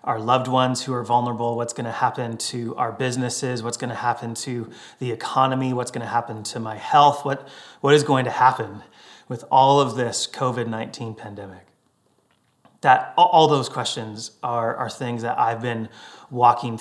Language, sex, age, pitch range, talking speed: English, male, 30-49, 120-140 Hz, 180 wpm